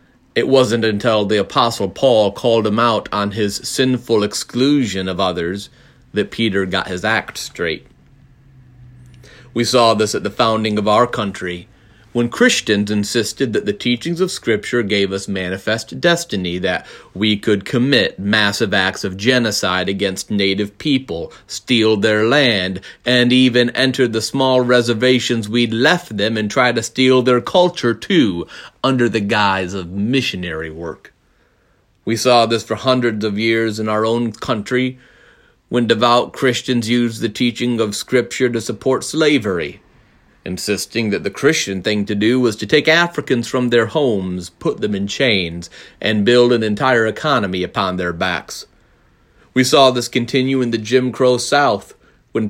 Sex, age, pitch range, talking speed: male, 30-49, 105-125 Hz, 155 wpm